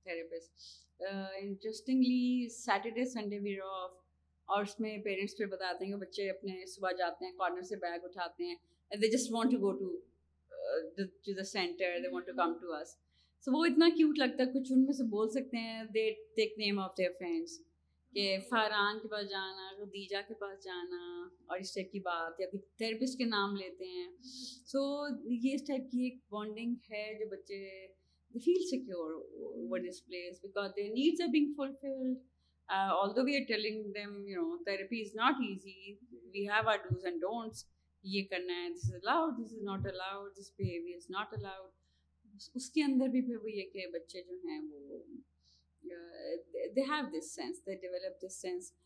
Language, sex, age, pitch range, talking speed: Urdu, female, 30-49, 190-255 Hz, 140 wpm